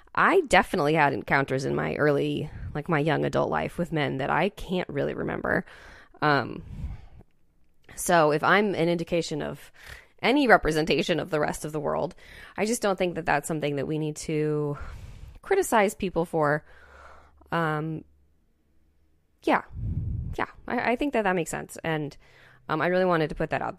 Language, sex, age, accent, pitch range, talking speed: English, female, 20-39, American, 150-195 Hz, 170 wpm